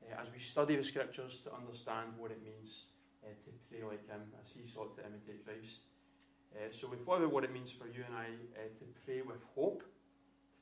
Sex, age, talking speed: male, 20-39, 225 wpm